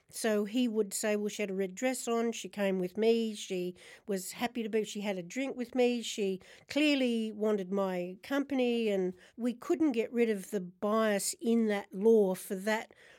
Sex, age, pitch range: female, 60-79, 200-245 Hz